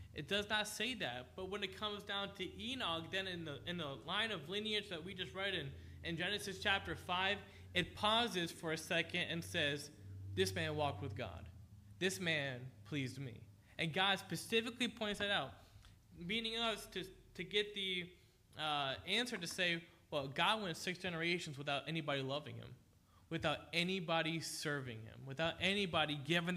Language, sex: English, male